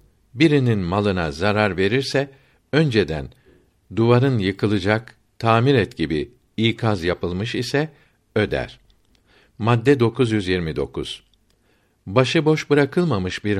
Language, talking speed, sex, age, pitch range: Turkish, 85 wpm, male, 60-79, 100-130 Hz